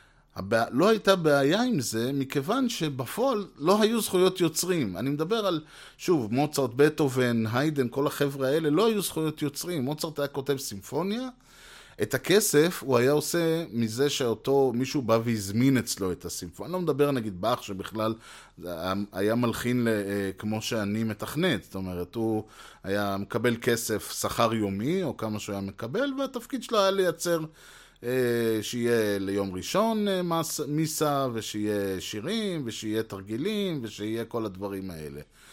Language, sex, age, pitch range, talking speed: Hebrew, male, 30-49, 105-155 Hz, 140 wpm